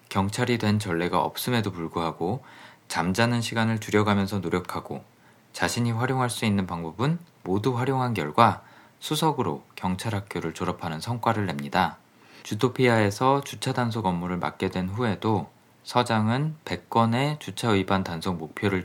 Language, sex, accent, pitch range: Korean, male, native, 95-125 Hz